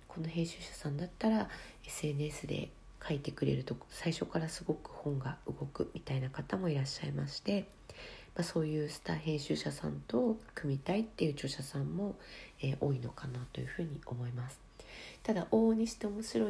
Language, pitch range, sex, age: Japanese, 135-165 Hz, female, 40-59